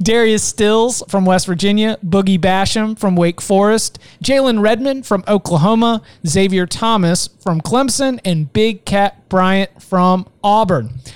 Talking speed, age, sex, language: 130 wpm, 30-49, male, English